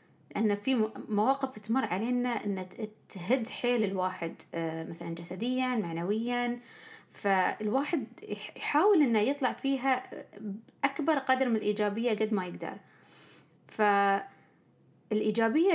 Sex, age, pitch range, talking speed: female, 30-49, 205-270 Hz, 95 wpm